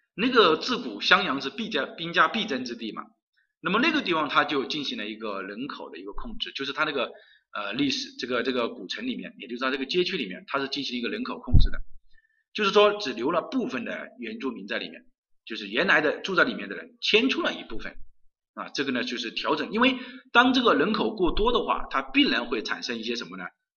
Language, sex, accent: Chinese, male, native